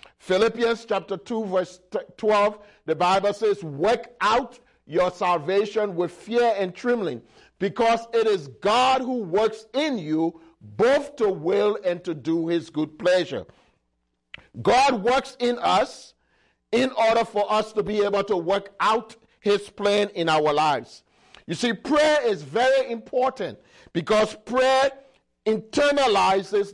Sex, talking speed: male, 135 wpm